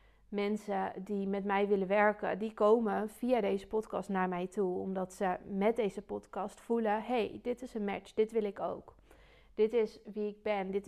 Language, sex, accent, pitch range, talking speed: Dutch, female, Dutch, 205-240 Hz, 200 wpm